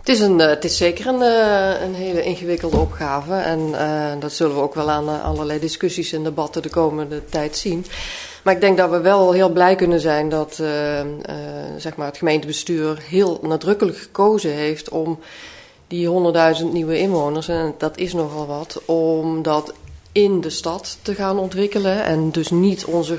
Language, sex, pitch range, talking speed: Dutch, female, 155-180 Hz, 170 wpm